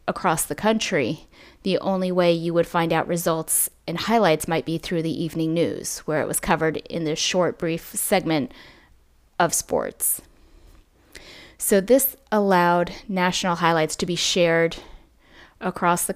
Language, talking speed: English, 150 wpm